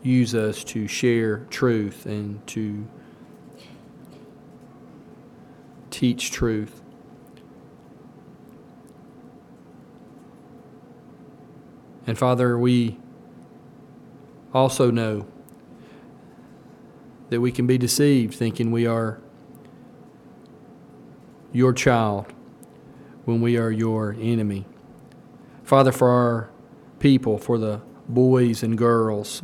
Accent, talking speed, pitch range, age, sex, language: American, 75 wpm, 110-125 Hz, 40-59, male, English